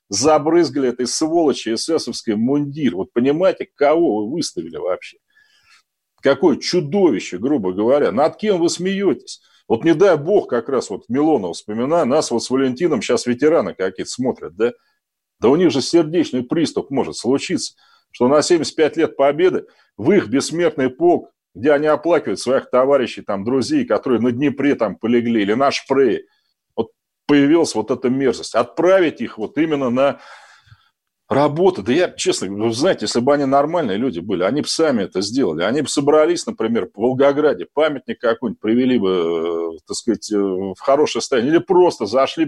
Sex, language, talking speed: male, Russian, 160 wpm